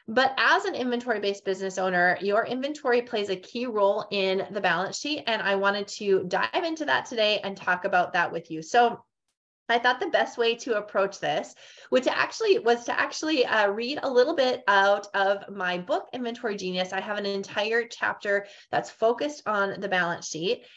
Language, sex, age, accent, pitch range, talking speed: English, female, 20-39, American, 195-240 Hz, 190 wpm